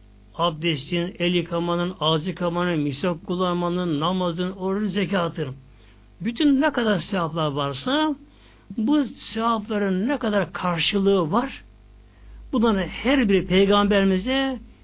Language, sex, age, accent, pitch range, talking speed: Turkish, male, 60-79, native, 145-225 Hz, 100 wpm